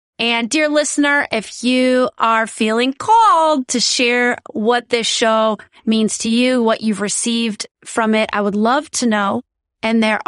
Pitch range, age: 215-275 Hz, 30-49